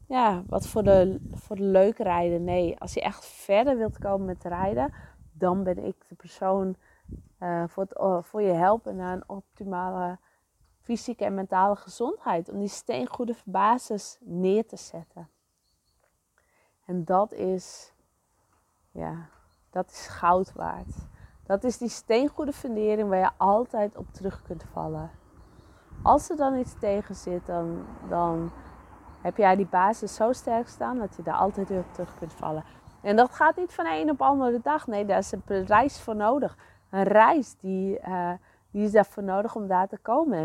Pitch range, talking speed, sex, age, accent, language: 180-225 Hz, 165 wpm, female, 20-39, Dutch, English